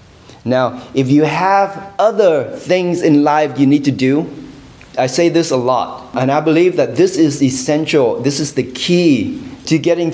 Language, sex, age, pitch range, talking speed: English, male, 30-49, 105-150 Hz, 180 wpm